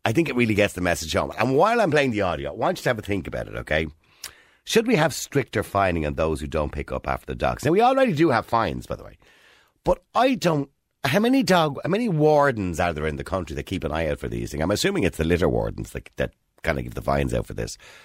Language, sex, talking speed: English, male, 285 wpm